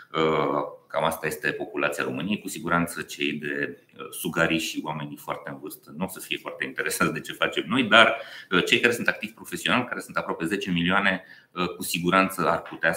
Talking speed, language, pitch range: 185 wpm, Romanian, 80-95 Hz